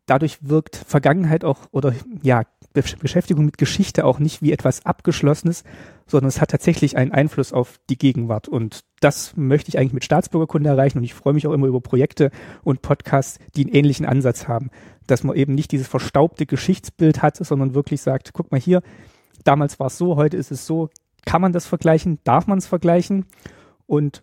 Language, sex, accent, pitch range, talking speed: German, male, German, 130-170 Hz, 190 wpm